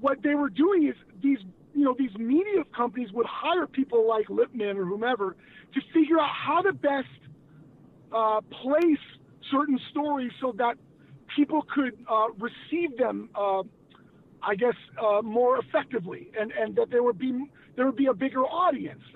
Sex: male